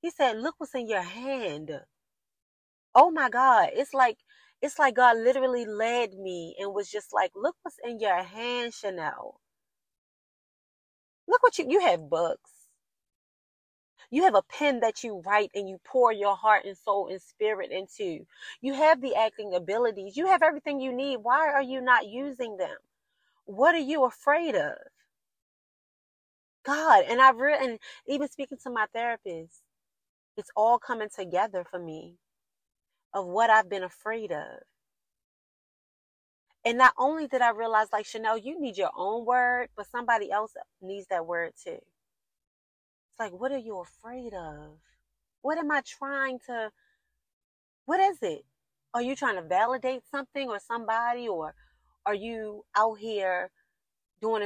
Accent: American